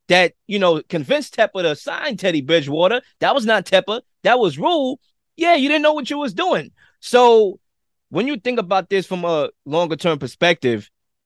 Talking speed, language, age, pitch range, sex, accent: 180 wpm, English, 20-39, 170-230 Hz, male, American